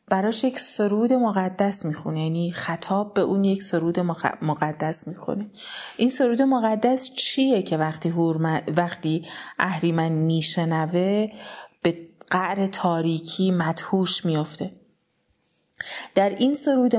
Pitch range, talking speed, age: 170-215 Hz, 110 wpm, 30-49